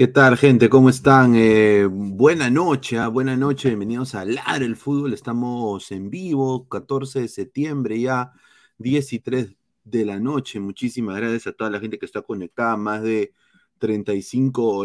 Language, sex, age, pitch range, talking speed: Spanish, male, 30-49, 110-140 Hz, 160 wpm